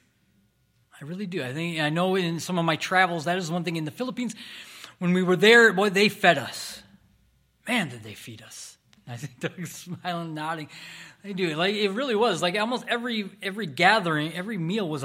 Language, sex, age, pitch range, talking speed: English, male, 30-49, 155-205 Hz, 205 wpm